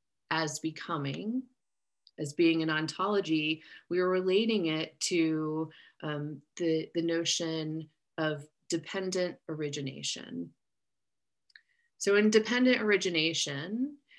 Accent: American